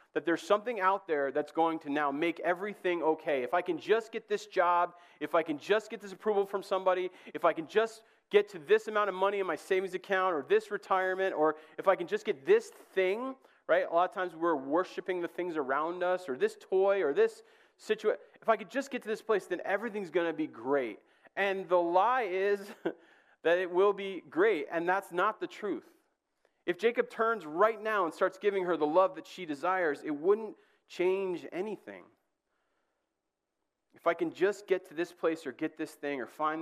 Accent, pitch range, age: American, 155-215 Hz, 30-49